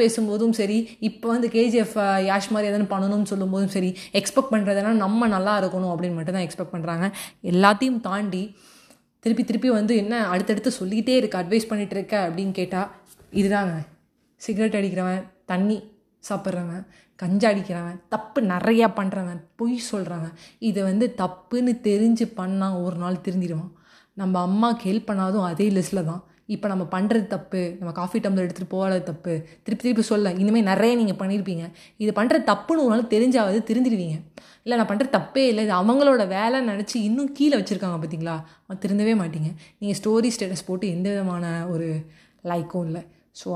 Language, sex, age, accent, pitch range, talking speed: Tamil, female, 20-39, native, 180-220 Hz, 150 wpm